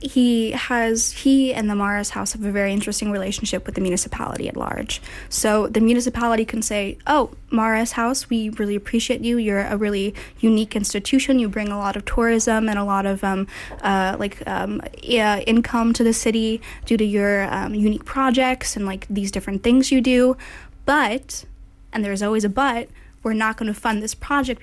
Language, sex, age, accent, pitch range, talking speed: English, female, 10-29, American, 205-235 Hz, 190 wpm